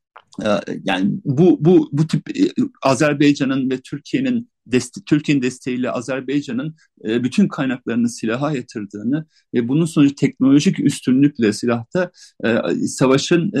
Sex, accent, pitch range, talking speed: male, native, 140-200 Hz, 95 wpm